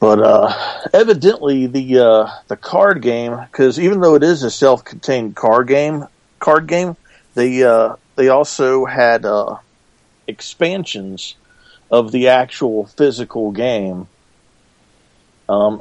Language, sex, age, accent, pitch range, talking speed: English, male, 50-69, American, 110-135 Hz, 120 wpm